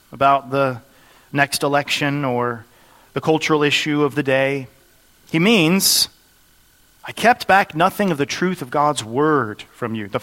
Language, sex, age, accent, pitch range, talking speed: English, male, 40-59, American, 125-160 Hz, 155 wpm